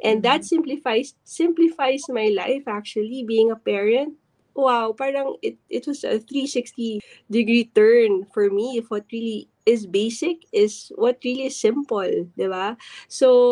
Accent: Filipino